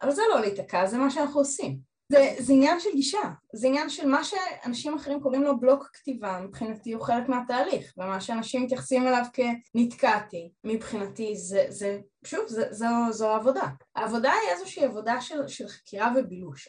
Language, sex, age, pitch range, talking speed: Hebrew, female, 20-39, 210-285 Hz, 165 wpm